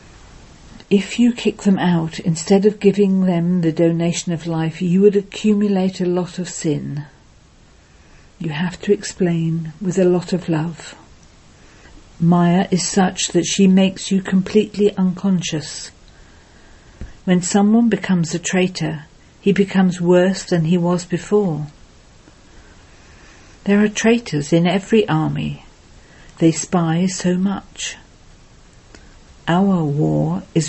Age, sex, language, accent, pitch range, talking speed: 50-69, female, English, British, 155-190 Hz, 125 wpm